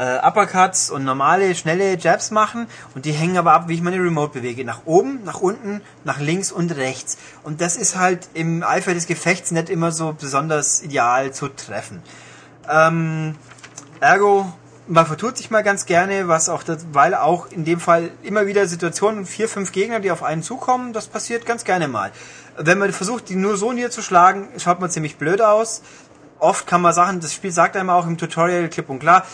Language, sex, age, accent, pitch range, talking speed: German, male, 30-49, German, 145-190 Hz, 200 wpm